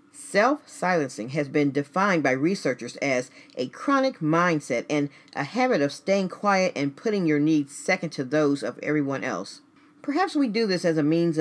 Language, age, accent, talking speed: English, 40-59, American, 180 wpm